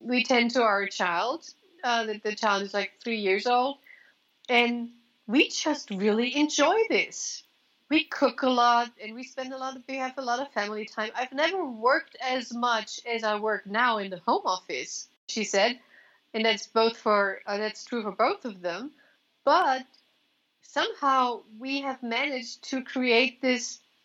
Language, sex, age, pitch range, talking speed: English, female, 40-59, 210-265 Hz, 175 wpm